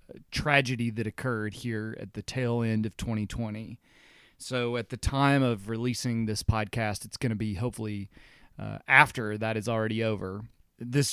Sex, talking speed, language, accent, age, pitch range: male, 160 wpm, English, American, 30-49, 110-130 Hz